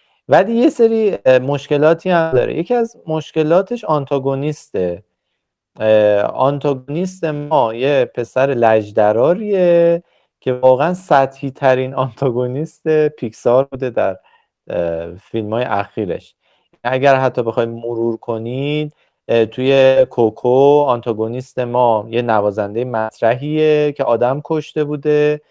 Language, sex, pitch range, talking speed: Persian, male, 115-145 Hz, 100 wpm